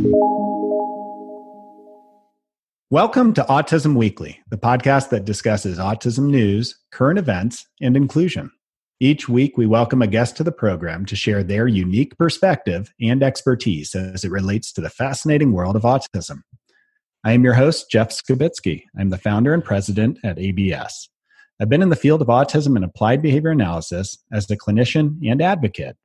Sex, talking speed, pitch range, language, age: male, 155 wpm, 105-155 Hz, English, 40-59